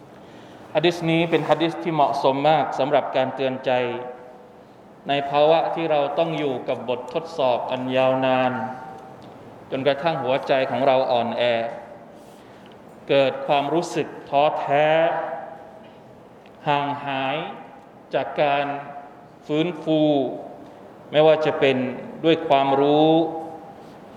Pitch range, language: 135-165 Hz, Thai